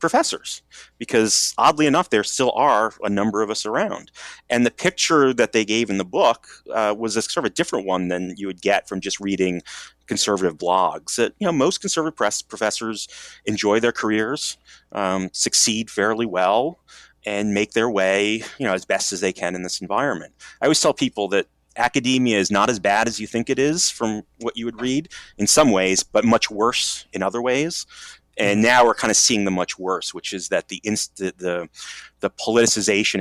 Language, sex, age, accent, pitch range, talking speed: English, male, 30-49, American, 95-115 Hz, 200 wpm